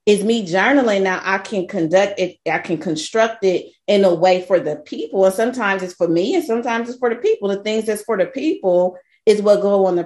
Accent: American